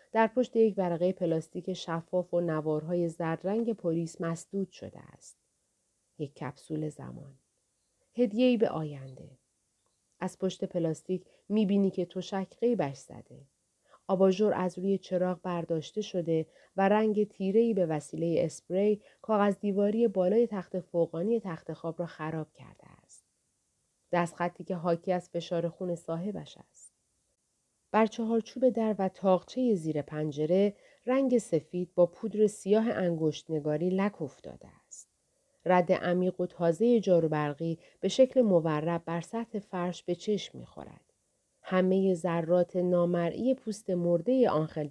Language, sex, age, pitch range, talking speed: Persian, female, 30-49, 165-200 Hz, 130 wpm